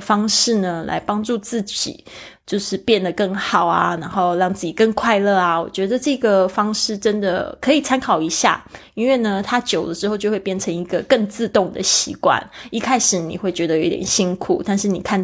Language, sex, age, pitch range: Chinese, female, 20-39, 185-215 Hz